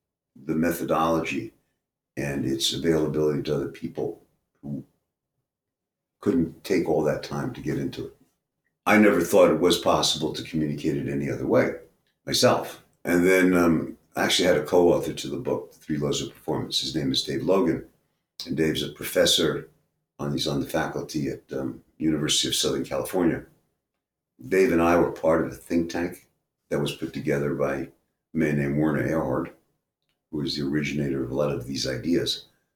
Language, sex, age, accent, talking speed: English, male, 50-69, American, 170 wpm